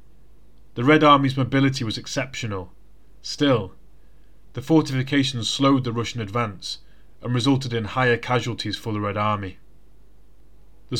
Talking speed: 125 wpm